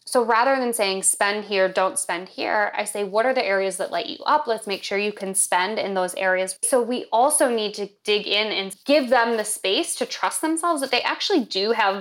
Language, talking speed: English, 240 wpm